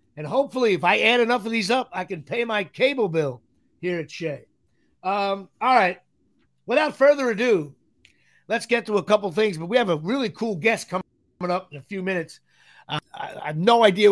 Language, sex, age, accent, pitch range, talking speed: English, male, 50-69, American, 155-240 Hz, 210 wpm